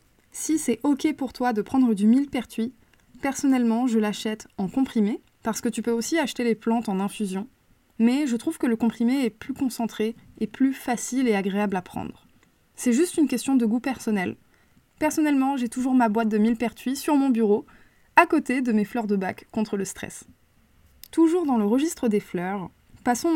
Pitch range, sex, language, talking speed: 210-260 Hz, female, French, 190 wpm